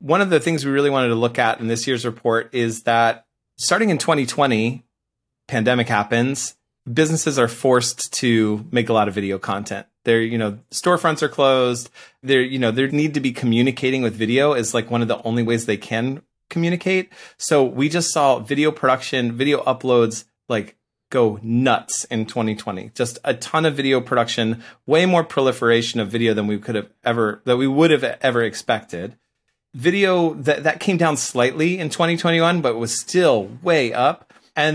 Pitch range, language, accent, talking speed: 115-150 Hz, English, American, 185 wpm